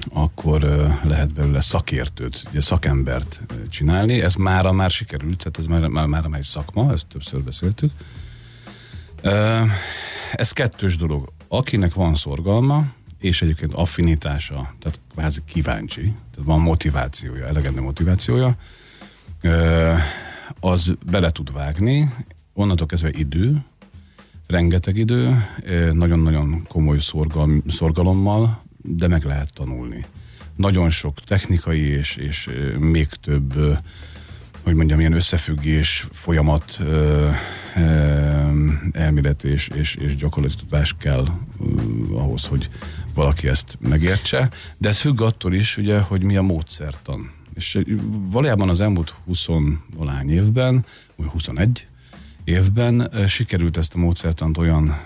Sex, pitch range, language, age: male, 75-100 Hz, Hungarian, 50-69